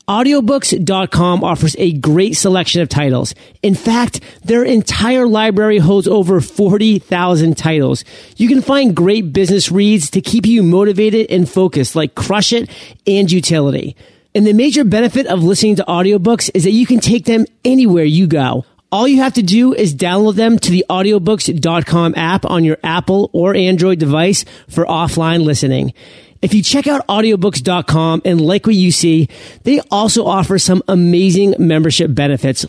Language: English